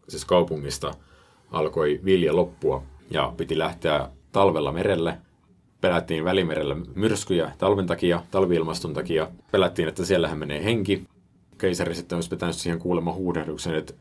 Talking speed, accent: 125 wpm, native